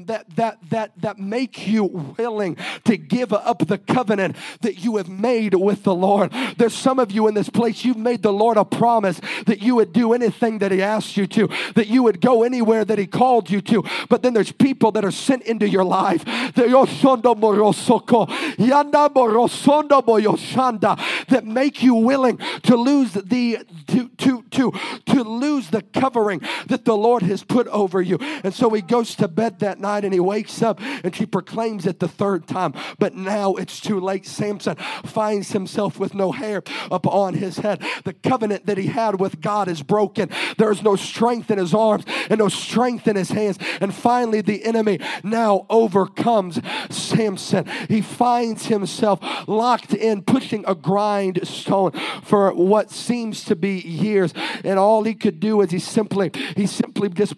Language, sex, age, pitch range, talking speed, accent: English, male, 40-59, 195-235 Hz, 180 wpm, American